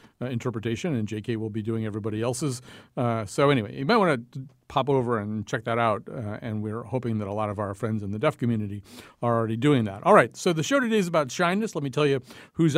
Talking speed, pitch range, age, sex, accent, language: 255 wpm, 115-145 Hz, 50-69, male, American, English